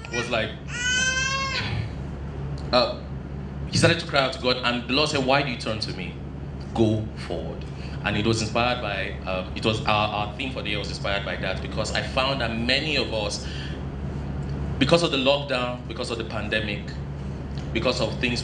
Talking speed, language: 190 wpm, English